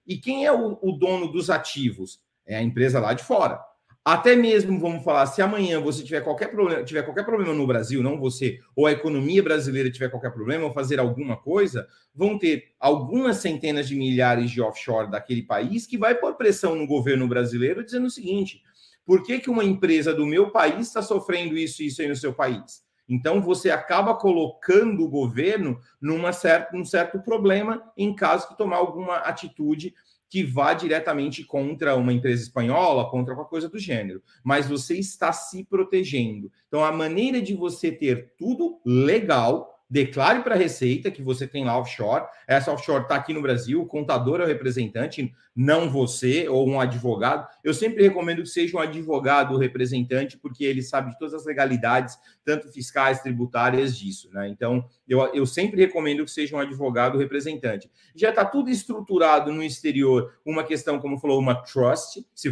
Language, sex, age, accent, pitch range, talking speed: Portuguese, male, 40-59, Brazilian, 130-180 Hz, 185 wpm